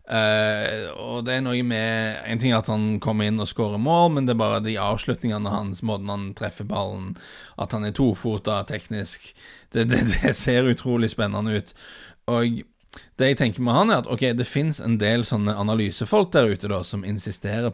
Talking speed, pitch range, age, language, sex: 200 wpm, 95-110 Hz, 30-49, English, male